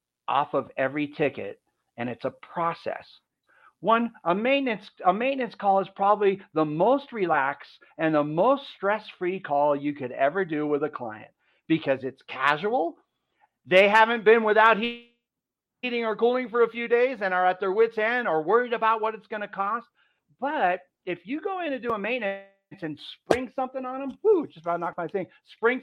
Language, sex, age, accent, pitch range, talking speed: English, male, 40-59, American, 155-225 Hz, 185 wpm